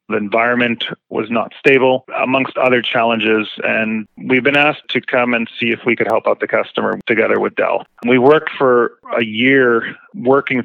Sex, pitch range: male, 115-130 Hz